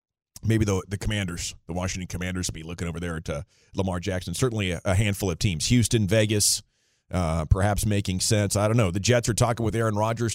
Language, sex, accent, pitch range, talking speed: English, male, American, 100-135 Hz, 215 wpm